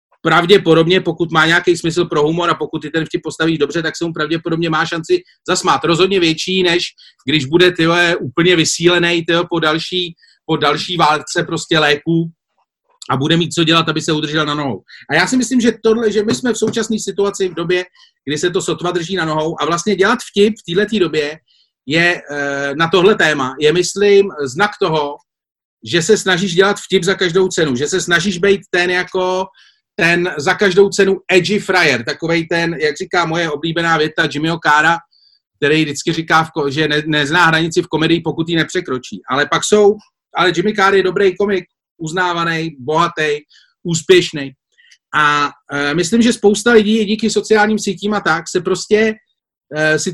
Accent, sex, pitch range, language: native, male, 155-195 Hz, Czech